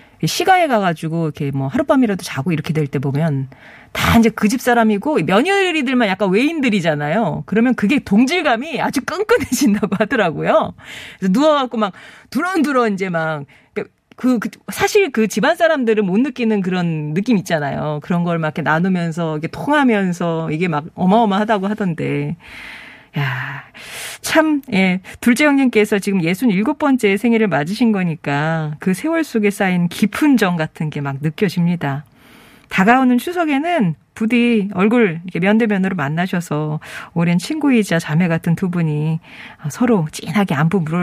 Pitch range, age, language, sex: 170-255 Hz, 40-59, Korean, female